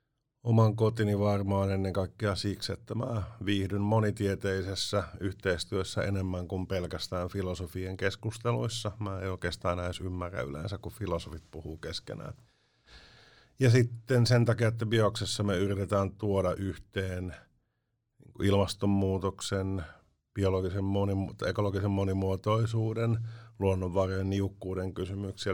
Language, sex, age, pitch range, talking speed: Finnish, male, 50-69, 95-110 Hz, 105 wpm